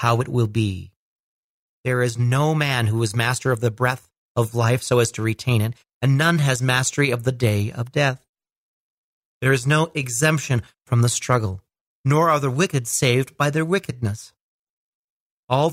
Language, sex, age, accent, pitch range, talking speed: English, male, 40-59, American, 120-155 Hz, 175 wpm